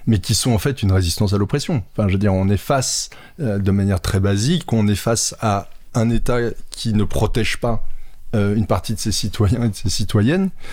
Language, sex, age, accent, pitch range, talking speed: French, male, 20-39, French, 100-125 Hz, 230 wpm